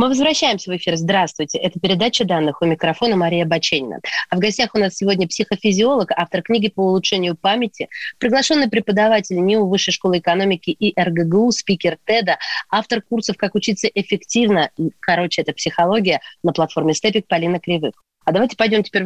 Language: Russian